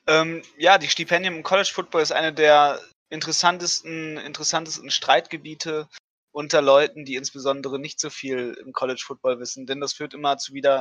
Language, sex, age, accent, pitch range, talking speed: German, male, 20-39, German, 135-160 Hz, 165 wpm